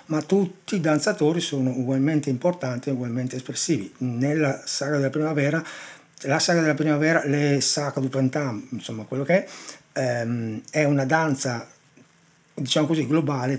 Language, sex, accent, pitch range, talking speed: Italian, male, native, 130-155 Hz, 140 wpm